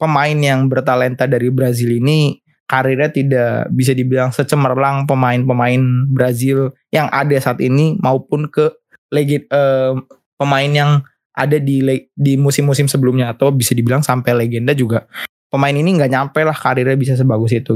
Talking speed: 150 wpm